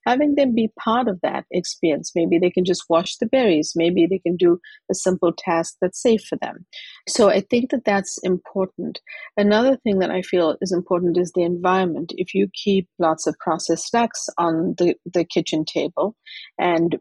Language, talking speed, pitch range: English, 190 wpm, 175-210 Hz